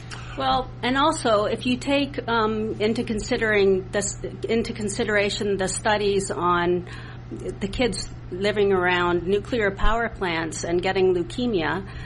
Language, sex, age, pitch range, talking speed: English, female, 50-69, 180-220 Hz, 125 wpm